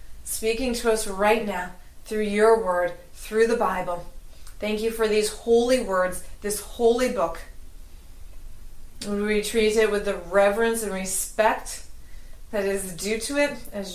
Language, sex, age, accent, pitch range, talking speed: English, female, 30-49, American, 190-230 Hz, 145 wpm